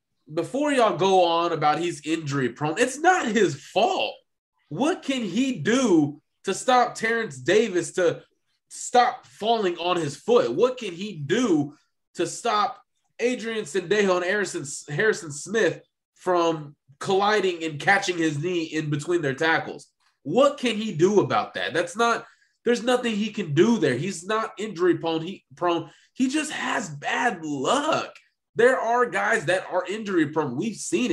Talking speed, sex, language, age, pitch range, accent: 160 wpm, male, English, 20-39, 140-205 Hz, American